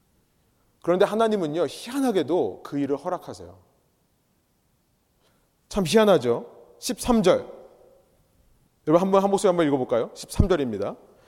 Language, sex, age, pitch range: Korean, male, 30-49, 150-230 Hz